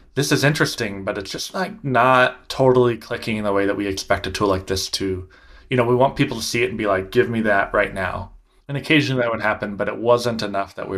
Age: 20-39